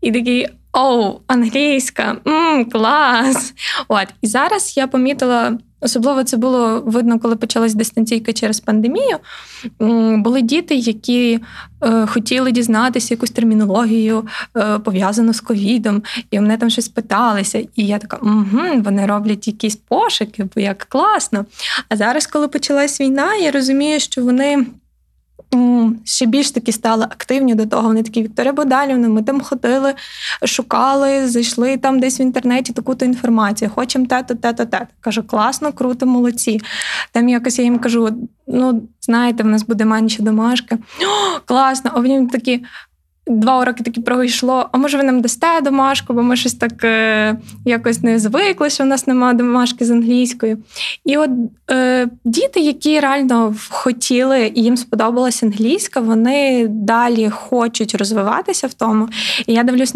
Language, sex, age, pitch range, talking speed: Ukrainian, female, 20-39, 220-260 Hz, 150 wpm